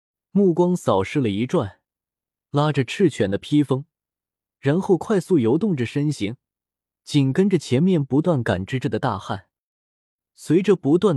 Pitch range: 115-170 Hz